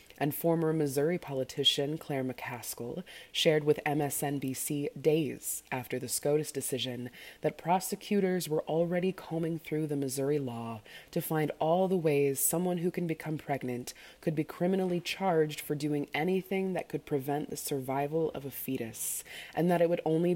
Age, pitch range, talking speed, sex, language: 20-39, 135-170 Hz, 155 wpm, female, English